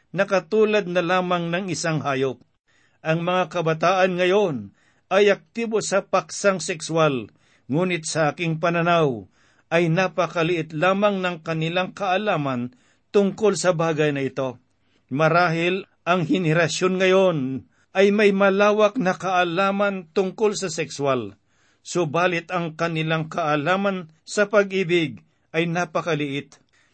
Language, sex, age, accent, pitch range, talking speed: Filipino, male, 50-69, native, 160-195 Hz, 110 wpm